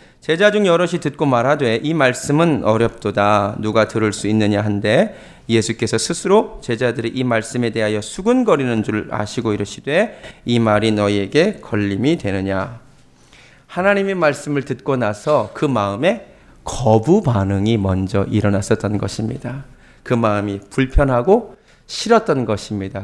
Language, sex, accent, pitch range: Korean, male, native, 110-150 Hz